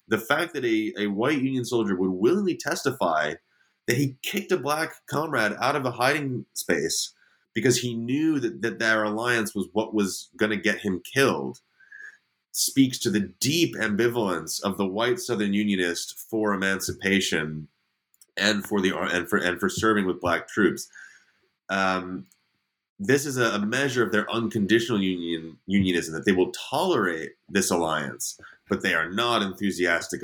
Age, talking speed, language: 30-49, 165 wpm, English